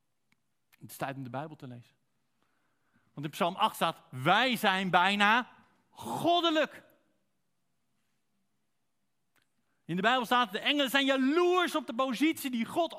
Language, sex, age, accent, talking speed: Dutch, male, 50-69, Dutch, 140 wpm